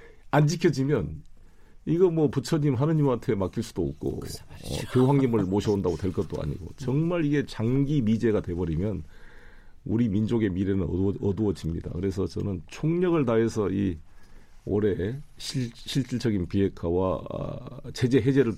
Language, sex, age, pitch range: Korean, male, 40-59, 90-120 Hz